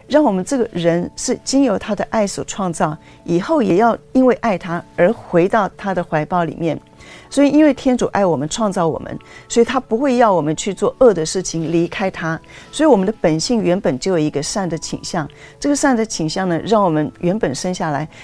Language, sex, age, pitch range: Chinese, female, 40-59, 165-215 Hz